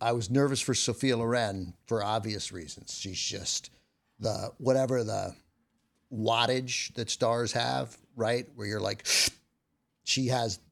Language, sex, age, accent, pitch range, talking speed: English, male, 50-69, American, 100-125 Hz, 135 wpm